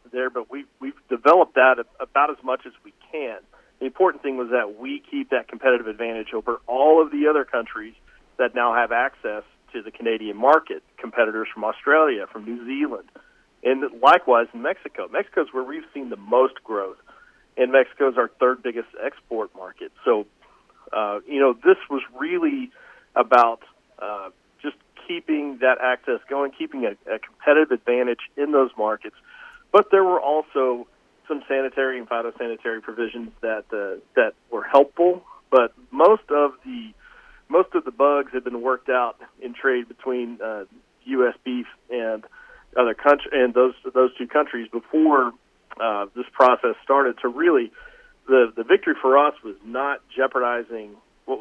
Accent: American